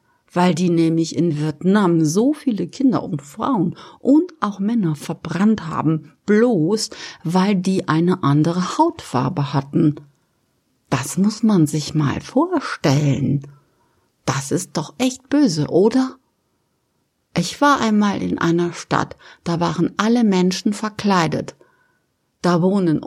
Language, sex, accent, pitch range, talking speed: German, female, German, 150-225 Hz, 120 wpm